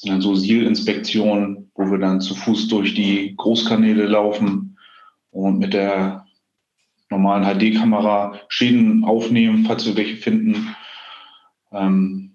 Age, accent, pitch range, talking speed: 30-49, German, 105-140 Hz, 115 wpm